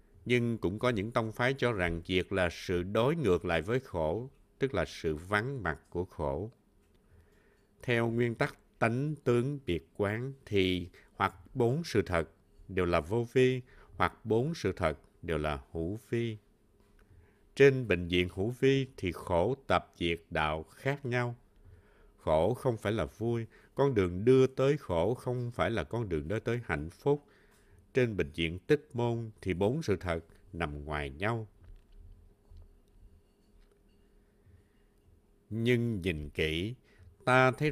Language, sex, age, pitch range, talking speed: Vietnamese, male, 60-79, 85-125 Hz, 150 wpm